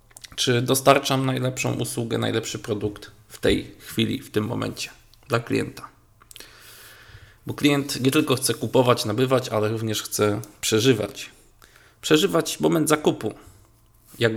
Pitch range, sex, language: 110-130 Hz, male, Polish